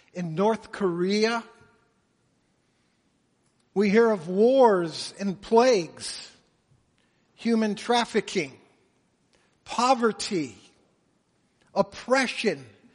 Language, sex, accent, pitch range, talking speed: English, male, American, 165-210 Hz, 60 wpm